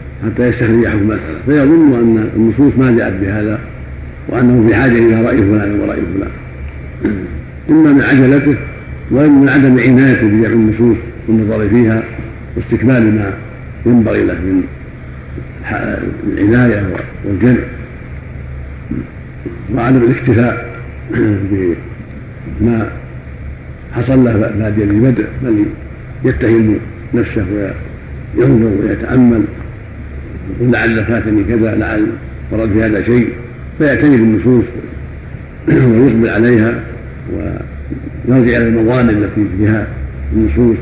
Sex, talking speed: male, 100 wpm